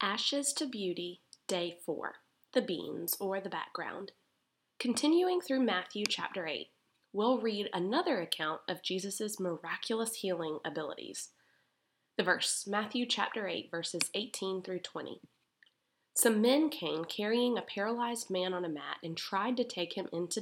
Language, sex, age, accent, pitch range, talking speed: English, female, 20-39, American, 170-220 Hz, 145 wpm